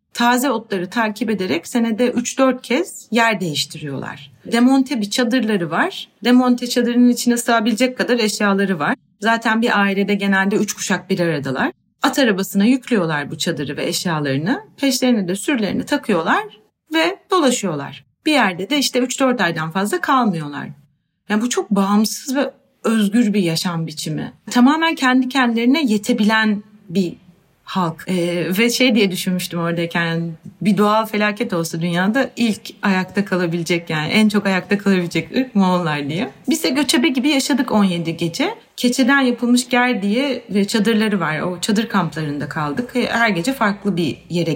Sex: female